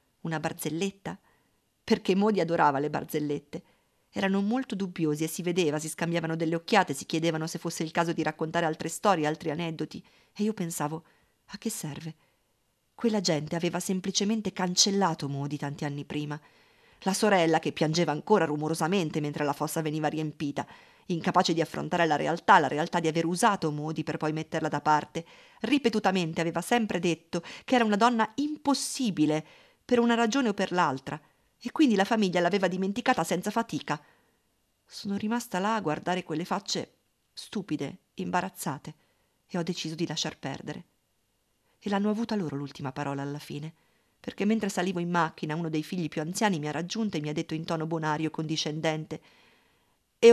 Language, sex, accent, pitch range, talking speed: Italian, female, native, 155-200 Hz, 165 wpm